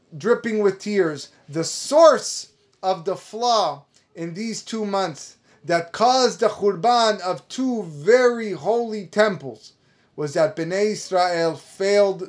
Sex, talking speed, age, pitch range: male, 125 wpm, 30-49, 155-205 Hz